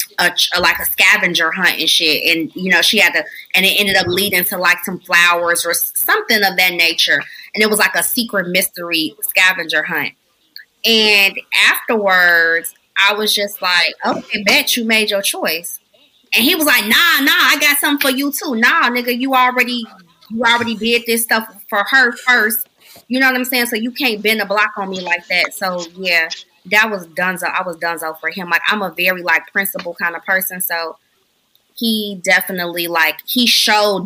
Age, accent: 20-39, American